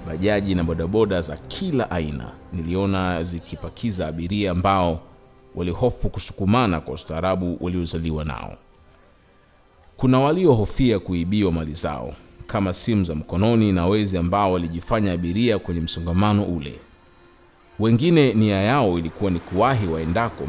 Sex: male